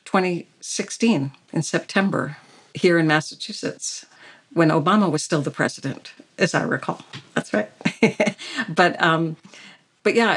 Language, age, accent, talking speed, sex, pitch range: English, 60-79, American, 120 wpm, female, 160-195 Hz